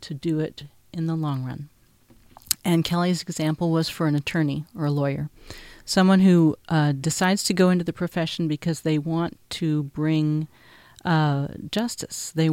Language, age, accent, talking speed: English, 40-59, American, 165 wpm